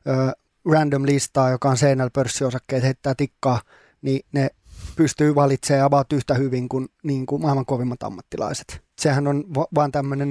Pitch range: 130-150 Hz